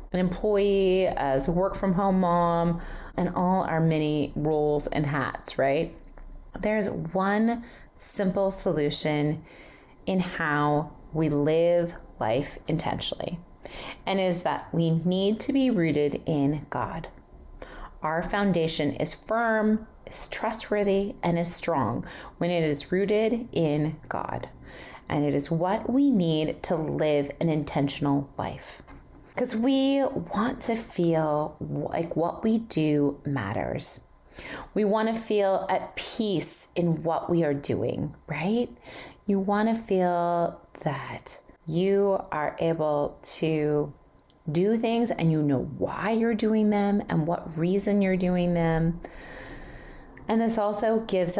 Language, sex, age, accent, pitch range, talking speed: English, female, 30-49, American, 150-205 Hz, 130 wpm